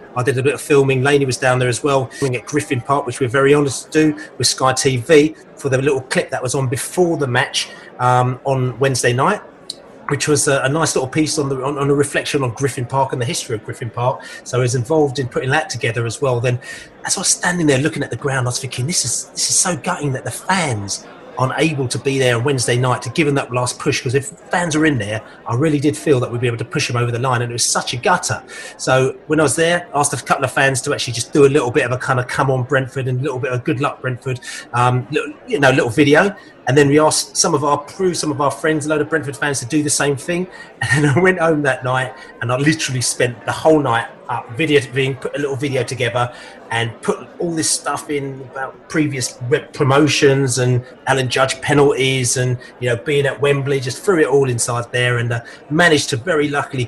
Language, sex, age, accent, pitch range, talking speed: English, male, 30-49, British, 125-150 Hz, 260 wpm